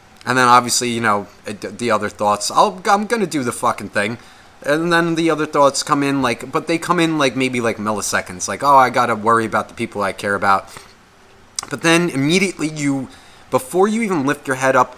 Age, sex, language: 30-49, male, English